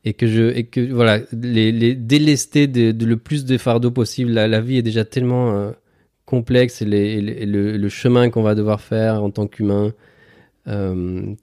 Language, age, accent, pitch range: French, 20-39, French, 105-120 Hz